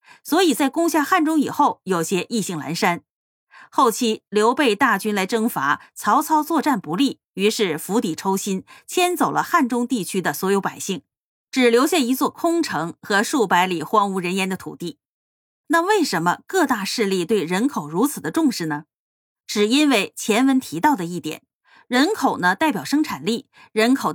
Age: 30-49